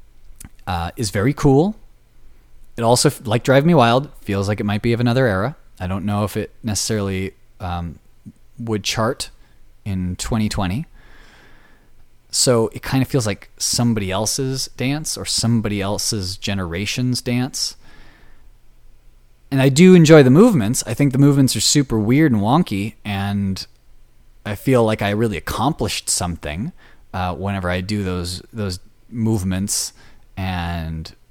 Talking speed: 140 wpm